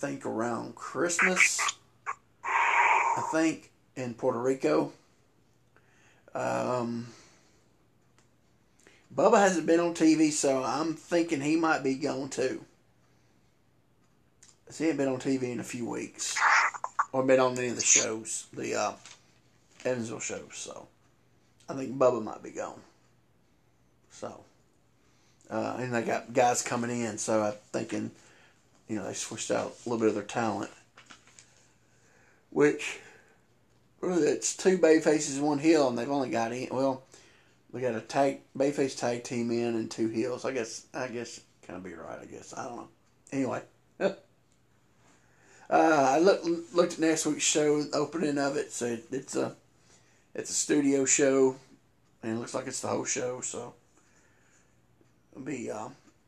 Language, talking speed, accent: English, 155 wpm, American